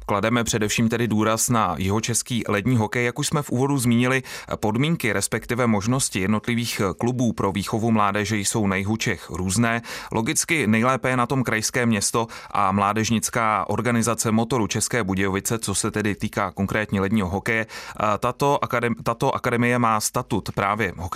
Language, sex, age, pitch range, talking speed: Czech, male, 30-49, 105-120 Hz, 145 wpm